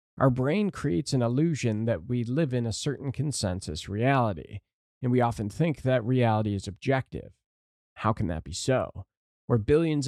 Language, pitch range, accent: English, 105-130 Hz, American